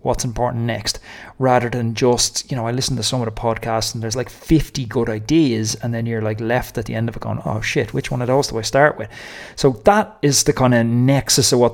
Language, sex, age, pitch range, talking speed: English, male, 30-49, 110-130 Hz, 260 wpm